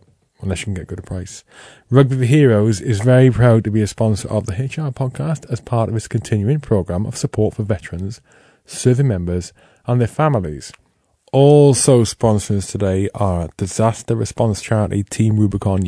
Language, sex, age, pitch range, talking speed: English, male, 20-39, 95-115 Hz, 175 wpm